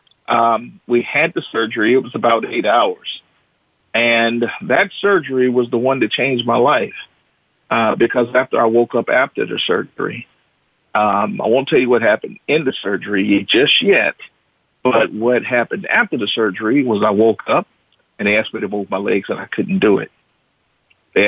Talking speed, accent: 185 wpm, American